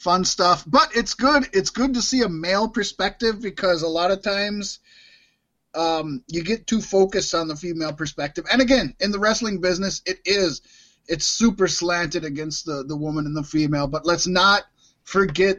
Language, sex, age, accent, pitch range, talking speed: English, male, 20-39, American, 160-205 Hz, 185 wpm